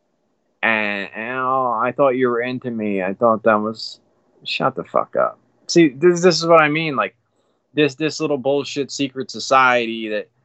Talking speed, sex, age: 185 wpm, male, 20-39